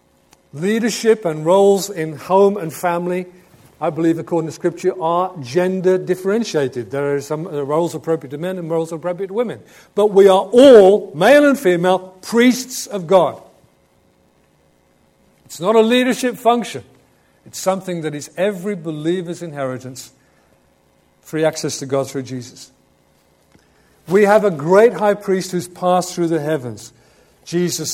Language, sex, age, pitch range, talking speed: English, male, 50-69, 135-195 Hz, 145 wpm